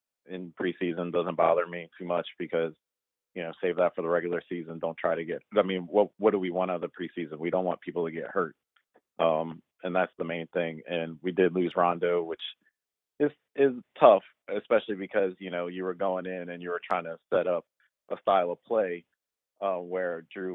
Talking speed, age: 220 wpm, 30-49